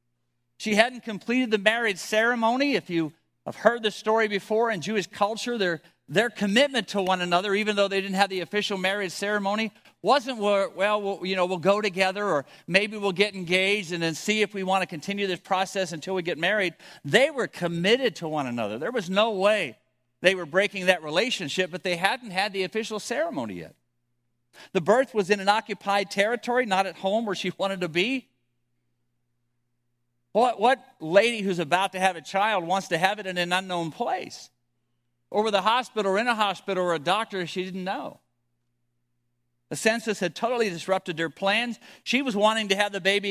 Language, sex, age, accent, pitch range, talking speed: English, male, 50-69, American, 165-210 Hz, 195 wpm